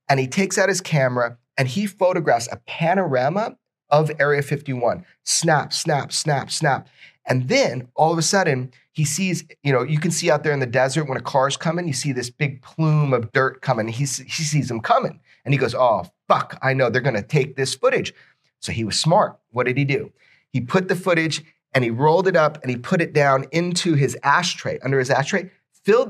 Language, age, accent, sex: English, 30-49, American, male